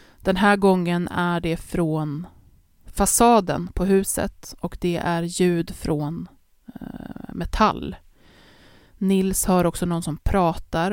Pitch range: 170-200 Hz